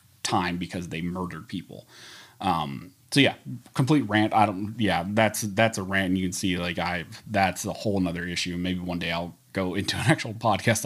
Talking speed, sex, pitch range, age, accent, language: 205 wpm, male, 90-105 Hz, 30-49, American, English